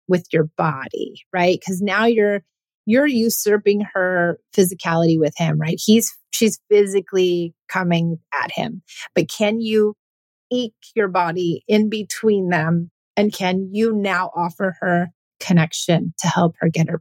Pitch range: 175-225 Hz